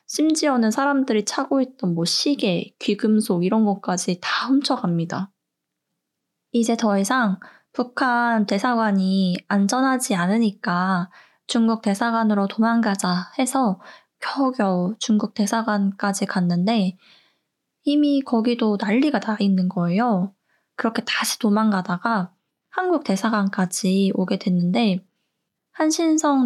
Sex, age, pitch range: female, 20-39, 195-245 Hz